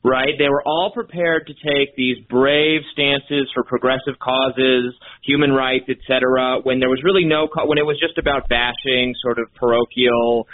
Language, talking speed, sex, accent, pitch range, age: English, 170 wpm, male, American, 120-165 Hz, 30-49